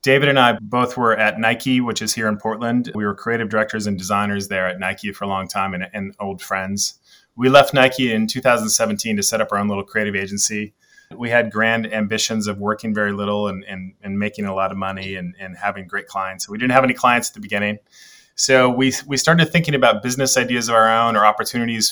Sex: male